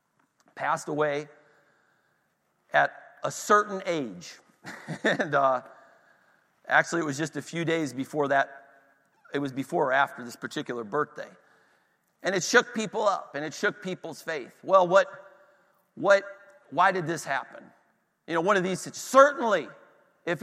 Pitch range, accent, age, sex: 170-230 Hz, American, 50-69, male